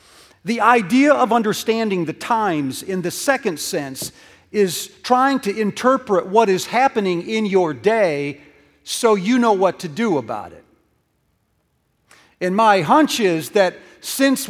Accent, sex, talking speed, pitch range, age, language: American, male, 140 wpm, 150-200 Hz, 50-69, English